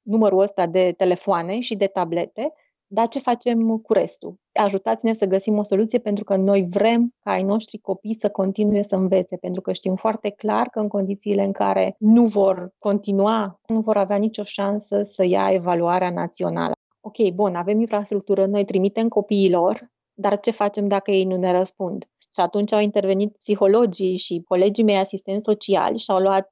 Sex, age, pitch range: female, 30-49, 190-215 Hz